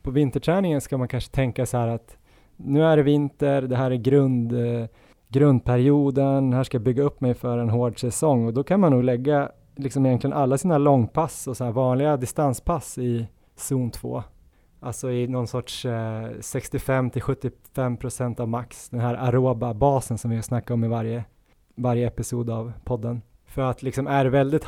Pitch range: 120-140 Hz